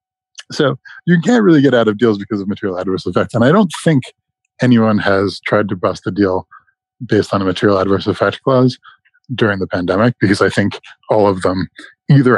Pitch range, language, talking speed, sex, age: 95-125 Hz, English, 200 wpm, male, 20-39